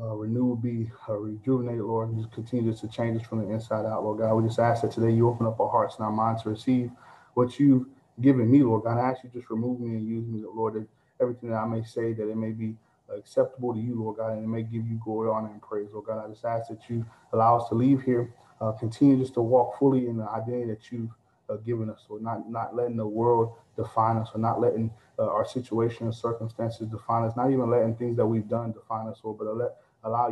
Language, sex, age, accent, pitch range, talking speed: English, male, 20-39, American, 110-125 Hz, 255 wpm